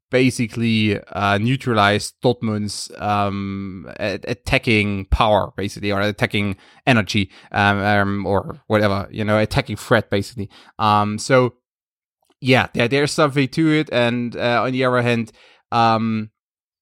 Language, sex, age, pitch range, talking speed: English, male, 20-39, 110-140 Hz, 120 wpm